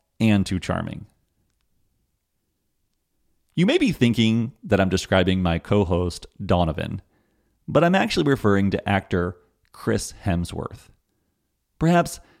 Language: English